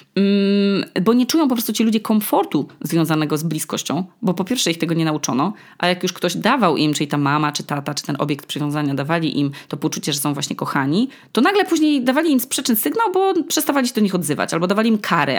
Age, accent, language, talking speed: 20-39, native, Polish, 230 wpm